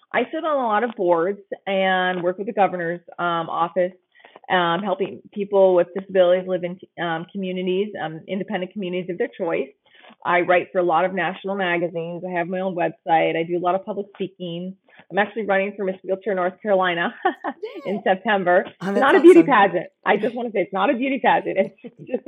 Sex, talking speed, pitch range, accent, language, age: female, 205 wpm, 175-195 Hz, American, English, 30-49